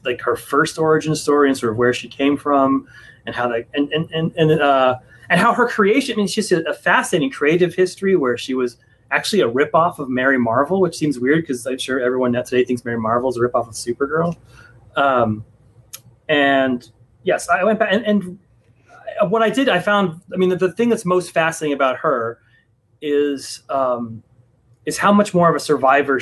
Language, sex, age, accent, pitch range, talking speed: English, male, 30-49, American, 120-155 Hz, 200 wpm